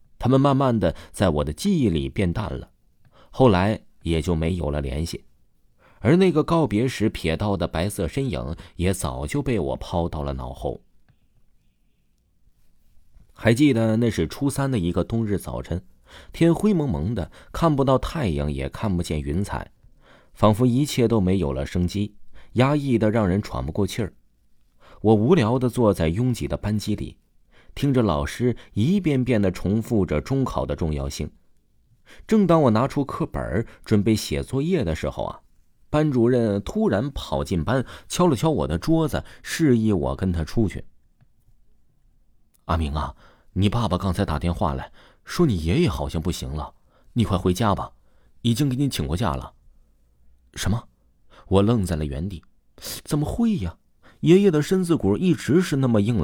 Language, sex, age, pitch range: Chinese, male, 30-49, 80-125 Hz